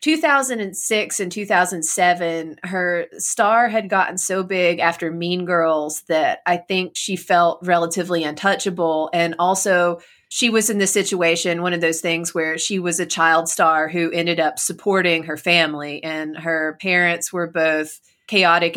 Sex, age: female, 30-49